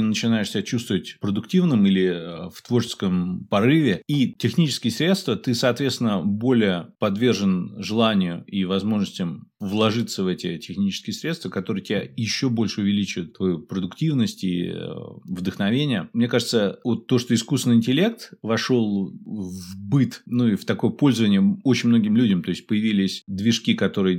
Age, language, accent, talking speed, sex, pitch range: 30-49, Russian, native, 135 wpm, male, 100-130 Hz